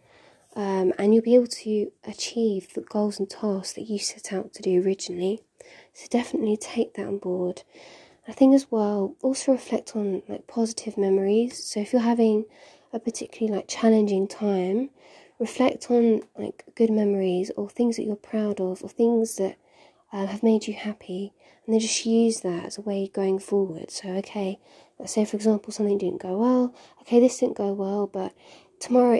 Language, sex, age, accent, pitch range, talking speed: English, female, 20-39, British, 200-230 Hz, 185 wpm